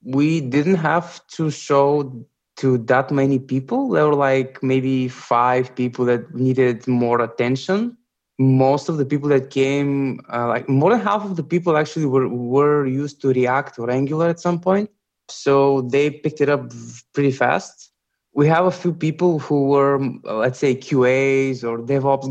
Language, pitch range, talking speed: English, 125-140 Hz, 170 wpm